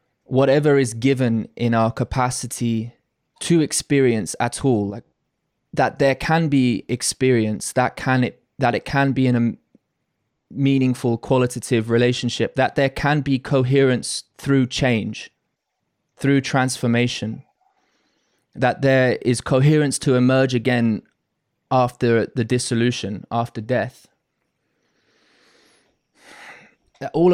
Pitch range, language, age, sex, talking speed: 120-140 Hz, English, 20-39, male, 110 wpm